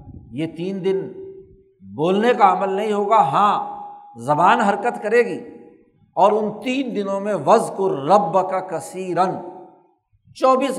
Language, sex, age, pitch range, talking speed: Urdu, male, 60-79, 160-205 Hz, 130 wpm